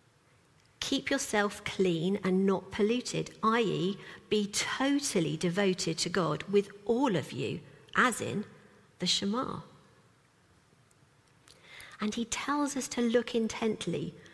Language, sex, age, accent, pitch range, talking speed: English, female, 50-69, British, 165-210 Hz, 115 wpm